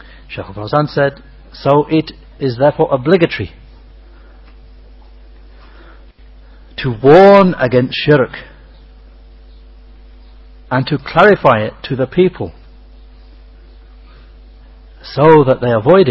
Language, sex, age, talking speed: English, male, 60-79, 85 wpm